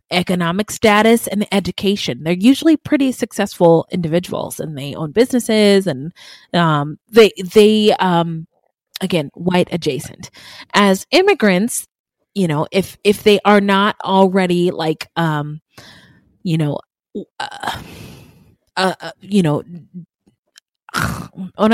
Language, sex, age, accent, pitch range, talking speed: English, female, 20-39, American, 165-225 Hz, 110 wpm